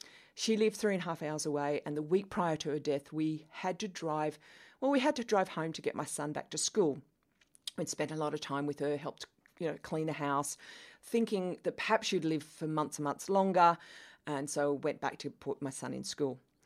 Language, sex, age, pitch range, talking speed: English, female, 40-59, 140-170 Hz, 240 wpm